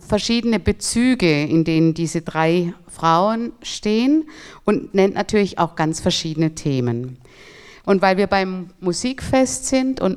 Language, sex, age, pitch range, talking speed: German, female, 50-69, 170-205 Hz, 130 wpm